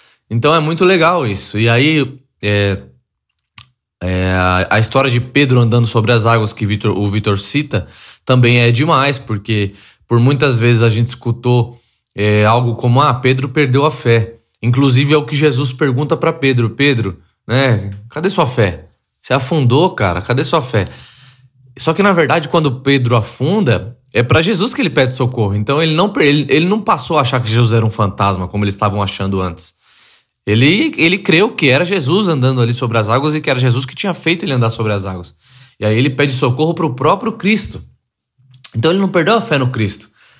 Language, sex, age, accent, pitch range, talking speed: Portuguese, male, 20-39, Brazilian, 115-150 Hz, 195 wpm